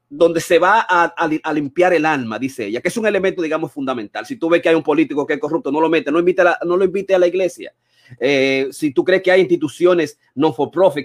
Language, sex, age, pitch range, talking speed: Spanish, male, 30-49, 140-180 Hz, 265 wpm